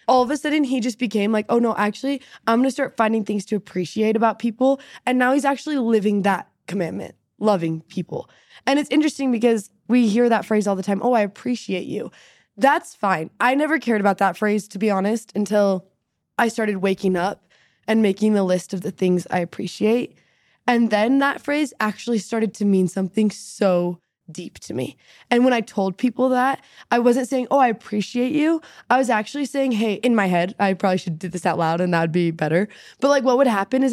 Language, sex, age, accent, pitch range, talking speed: English, female, 20-39, American, 195-250 Hz, 215 wpm